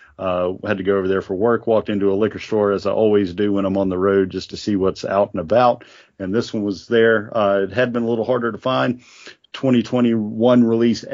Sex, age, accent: male, 40-59, American